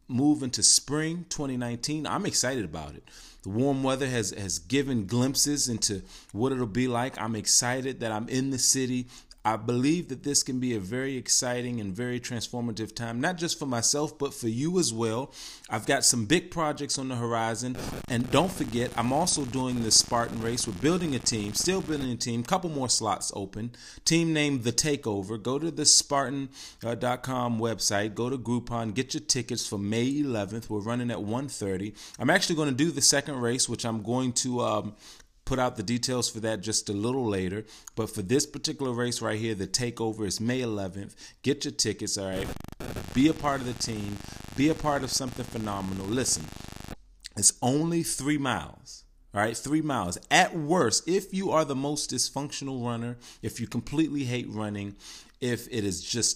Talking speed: 195 wpm